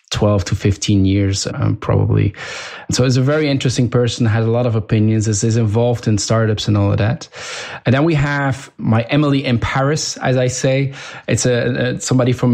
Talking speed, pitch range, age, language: 190 wpm, 110-130 Hz, 20-39, English